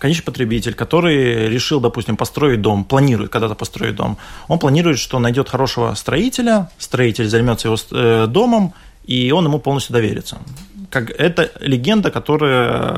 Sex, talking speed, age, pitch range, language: male, 135 wpm, 20-39, 115-150 Hz, Russian